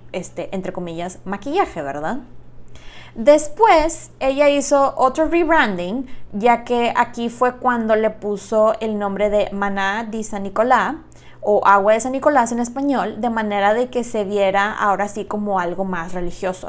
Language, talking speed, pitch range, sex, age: Spanish, 155 wpm, 195-255 Hz, female, 20-39